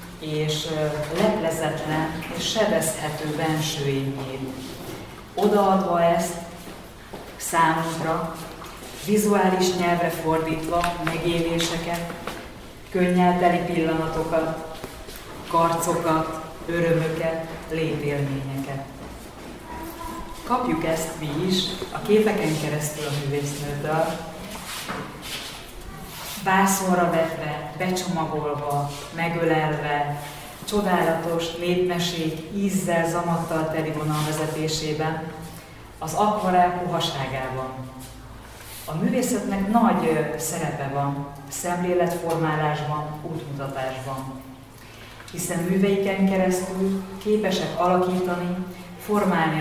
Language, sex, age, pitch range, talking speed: Hungarian, female, 30-49, 150-175 Hz, 65 wpm